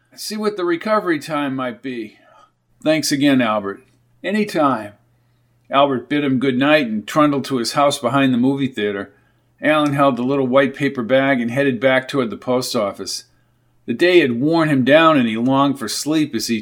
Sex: male